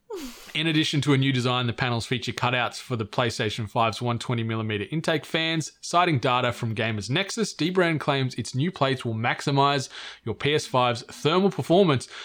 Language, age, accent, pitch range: English, 20-39, Australian, 125-155 Hz